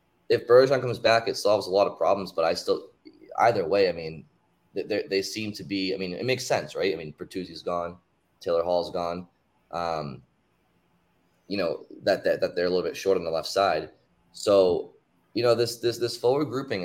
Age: 20-39